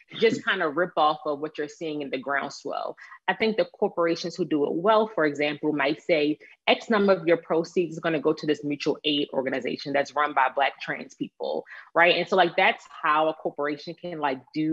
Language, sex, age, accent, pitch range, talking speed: English, female, 20-39, American, 140-170 Hz, 225 wpm